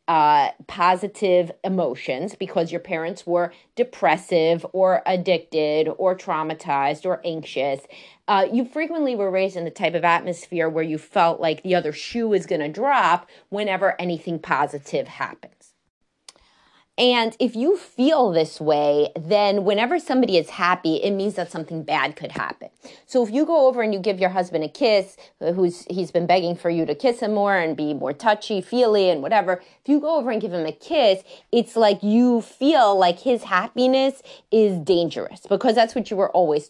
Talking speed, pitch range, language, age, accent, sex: 180 wpm, 170-230 Hz, English, 30-49, American, female